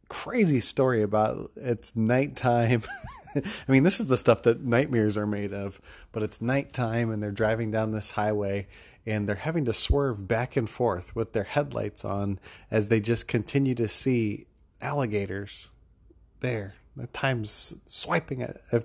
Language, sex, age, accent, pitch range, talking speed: English, male, 30-49, American, 105-130 Hz, 160 wpm